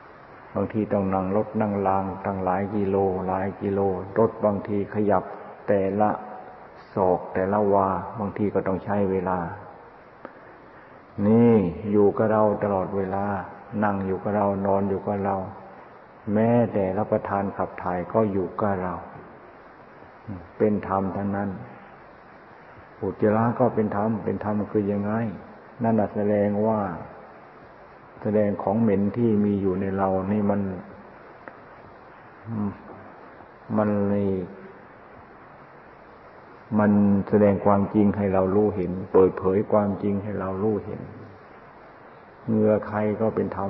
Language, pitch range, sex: Thai, 95-105 Hz, male